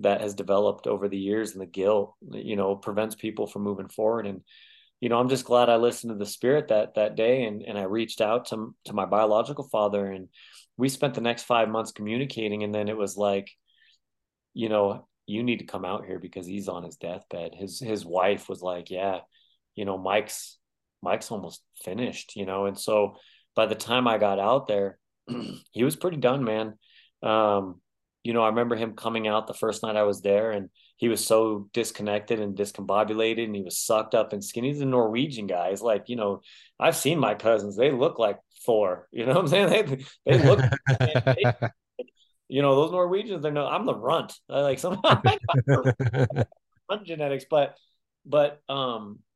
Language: English